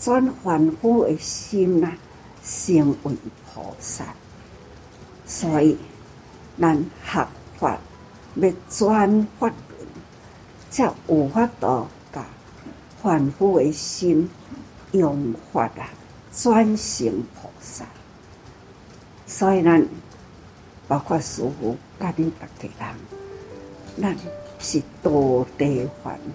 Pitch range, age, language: 125-200 Hz, 60-79, Chinese